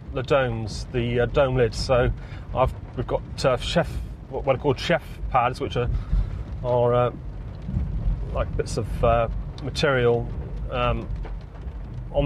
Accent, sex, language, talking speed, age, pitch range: British, male, English, 135 wpm, 30-49, 120-140 Hz